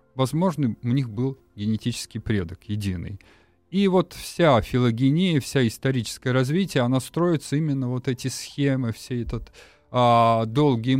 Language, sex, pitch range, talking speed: Russian, male, 110-135 Hz, 125 wpm